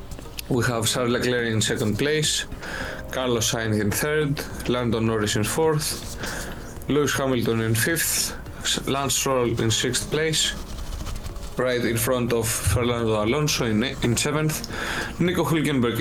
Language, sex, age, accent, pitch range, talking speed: Greek, male, 20-39, Spanish, 115-140 Hz, 125 wpm